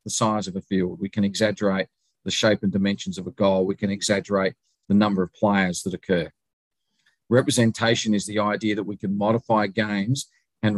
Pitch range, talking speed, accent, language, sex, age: 100-115 Hz, 190 wpm, Australian, English, male, 50-69